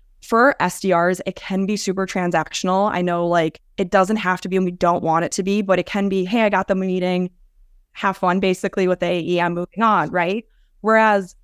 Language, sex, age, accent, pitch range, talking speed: English, female, 20-39, American, 165-195 Hz, 220 wpm